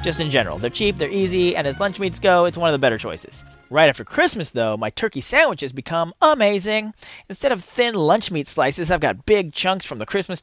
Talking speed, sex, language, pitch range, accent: 230 wpm, male, English, 160-235 Hz, American